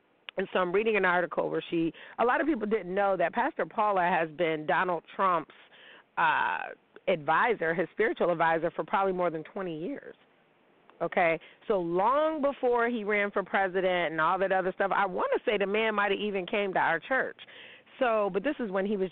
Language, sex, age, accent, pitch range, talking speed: English, female, 40-59, American, 175-215 Hz, 205 wpm